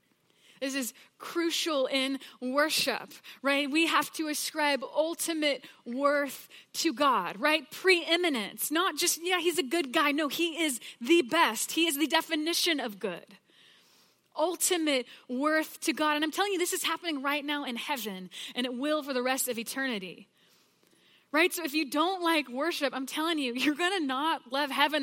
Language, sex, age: English, female, 20-39